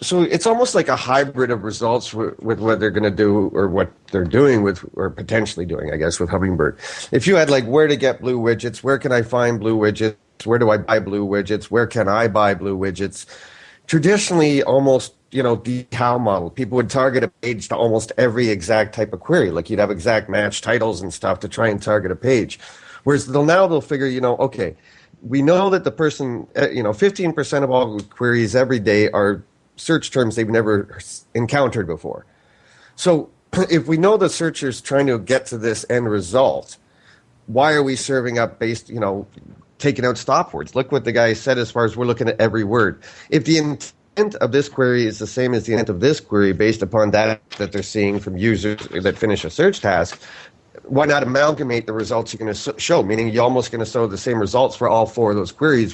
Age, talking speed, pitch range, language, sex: 40-59, 220 wpm, 105-135 Hz, English, male